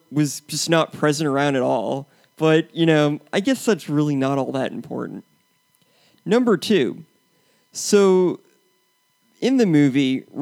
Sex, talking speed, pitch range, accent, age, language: male, 140 wpm, 135-175 Hz, American, 30-49, English